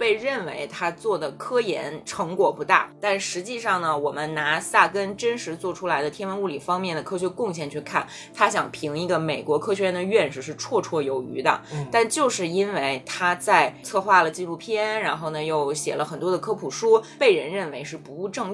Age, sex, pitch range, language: 20-39, female, 160-245 Hz, Chinese